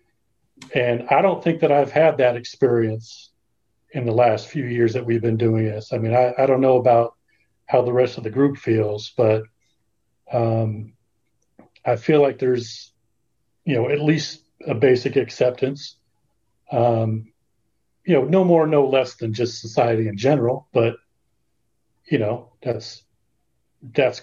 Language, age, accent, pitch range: English, 40-59, American, 115-135 Hz